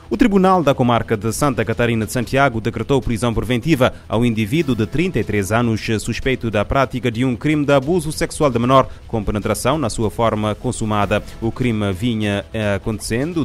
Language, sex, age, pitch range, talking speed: Portuguese, male, 30-49, 105-125 Hz, 170 wpm